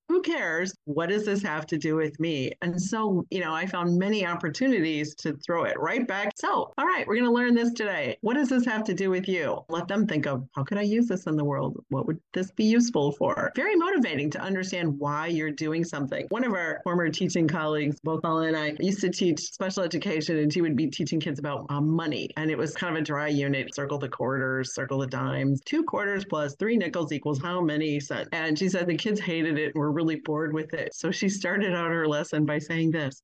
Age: 40-59